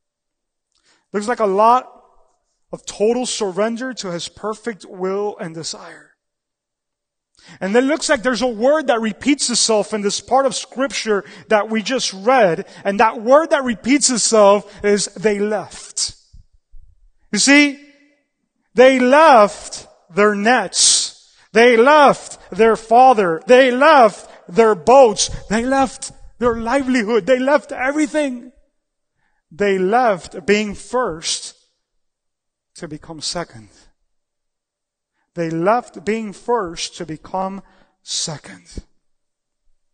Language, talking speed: English, 115 wpm